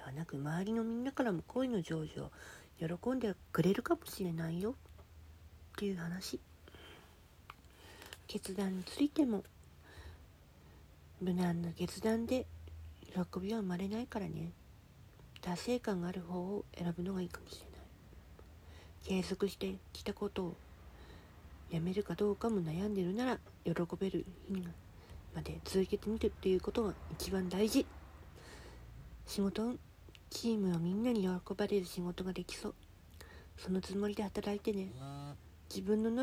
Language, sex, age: Japanese, female, 40-59